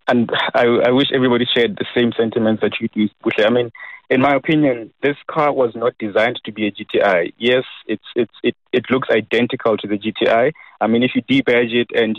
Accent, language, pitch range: South African, English, 110-125 Hz